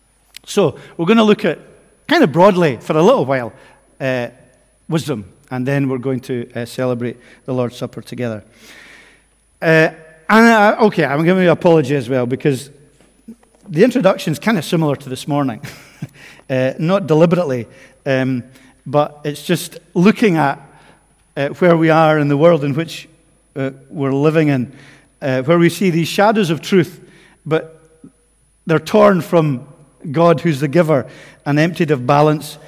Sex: male